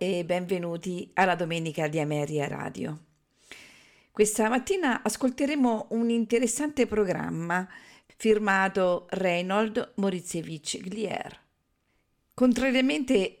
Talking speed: 80 wpm